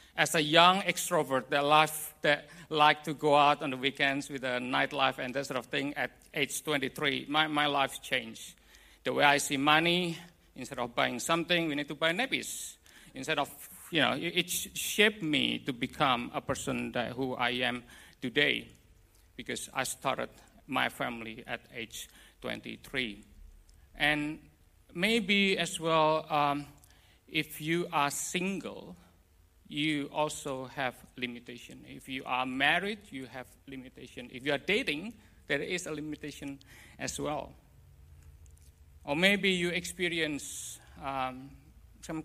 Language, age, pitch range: English, 50-69, 115-150 Hz